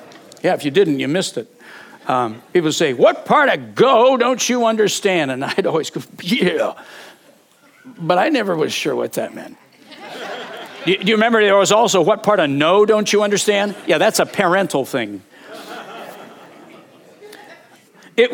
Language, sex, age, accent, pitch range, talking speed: English, male, 60-79, American, 230-300 Hz, 160 wpm